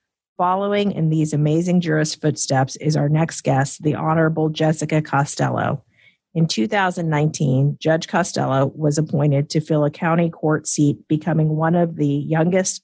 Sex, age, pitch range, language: female, 40-59, 145-170 Hz, English